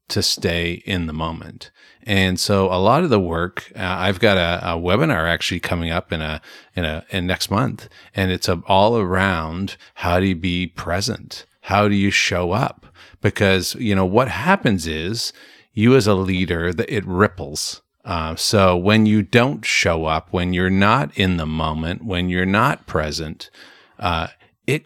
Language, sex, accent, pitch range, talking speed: English, male, American, 85-105 Hz, 180 wpm